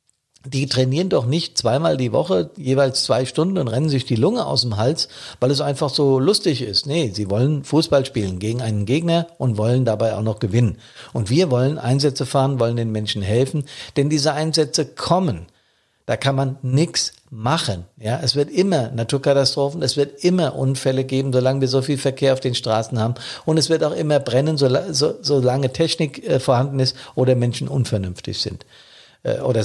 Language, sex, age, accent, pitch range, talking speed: German, male, 50-69, German, 120-155 Hz, 180 wpm